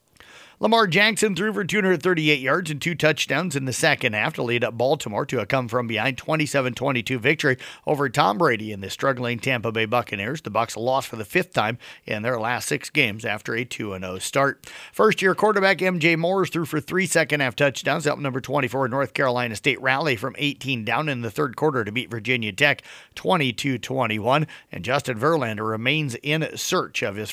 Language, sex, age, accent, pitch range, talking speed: English, male, 50-69, American, 120-155 Hz, 180 wpm